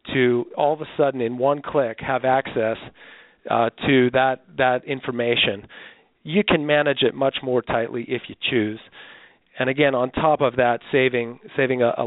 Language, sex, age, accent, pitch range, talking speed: English, male, 40-59, American, 120-145 Hz, 175 wpm